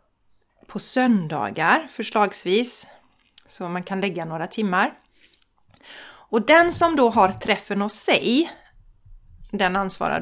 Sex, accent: female, native